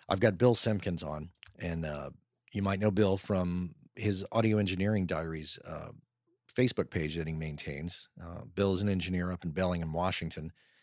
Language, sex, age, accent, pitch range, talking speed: English, male, 40-59, American, 80-100 Hz, 170 wpm